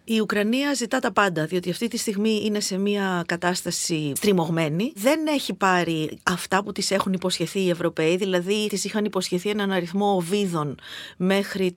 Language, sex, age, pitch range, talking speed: Greek, female, 30-49, 180-240 Hz, 165 wpm